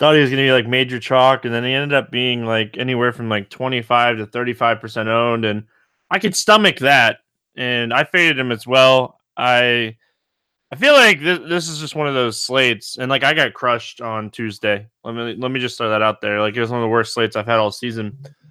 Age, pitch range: 20-39, 115-145 Hz